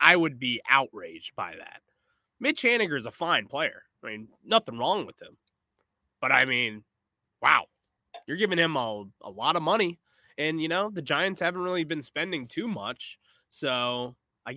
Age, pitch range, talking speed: 20-39, 115-170 Hz, 175 wpm